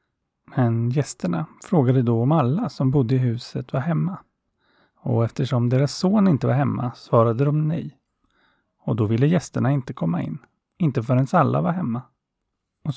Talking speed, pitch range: 160 wpm, 115-140 Hz